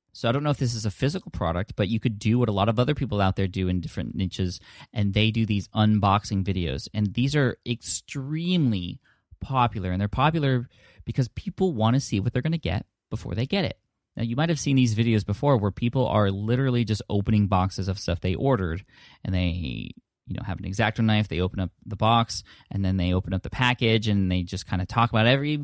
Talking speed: 235 wpm